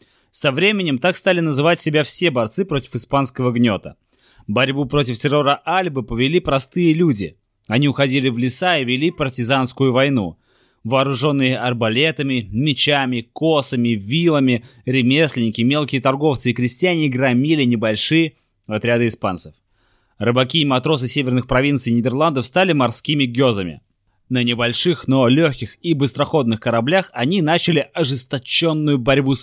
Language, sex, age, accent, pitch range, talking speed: Russian, male, 20-39, native, 120-150 Hz, 125 wpm